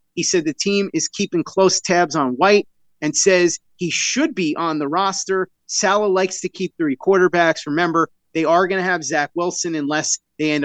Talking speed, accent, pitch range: 195 wpm, American, 155-185 Hz